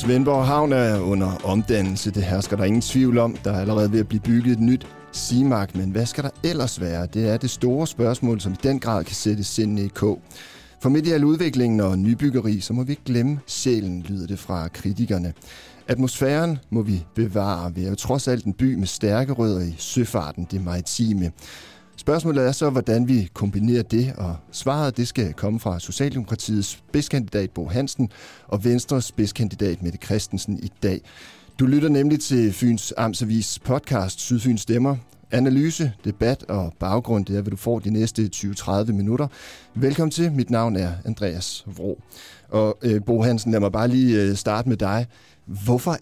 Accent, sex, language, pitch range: native, male, Danish, 100-125 Hz